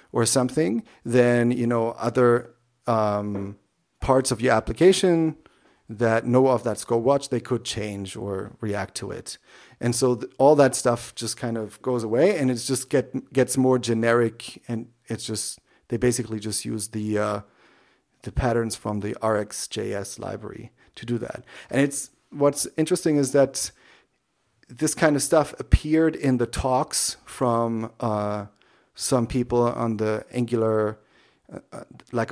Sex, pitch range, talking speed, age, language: male, 110-130 Hz, 150 wpm, 40-59, English